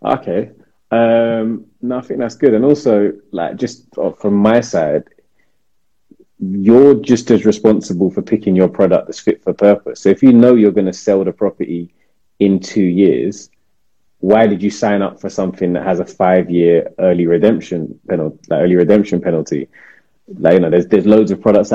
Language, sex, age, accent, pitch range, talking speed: English, male, 30-49, British, 90-105 Hz, 180 wpm